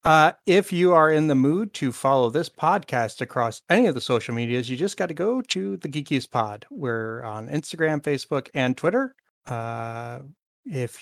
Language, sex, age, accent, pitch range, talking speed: English, male, 30-49, American, 120-160 Hz, 185 wpm